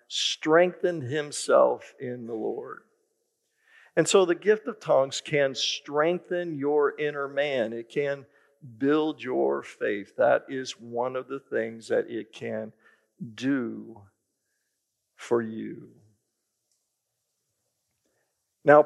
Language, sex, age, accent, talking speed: English, male, 50-69, American, 110 wpm